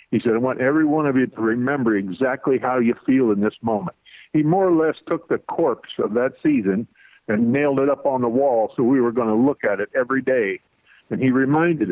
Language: English